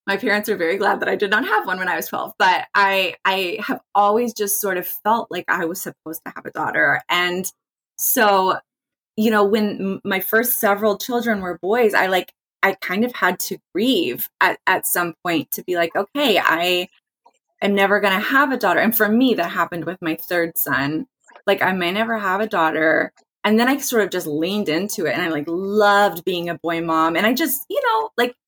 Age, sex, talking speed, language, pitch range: 20-39, female, 225 wpm, English, 175-225 Hz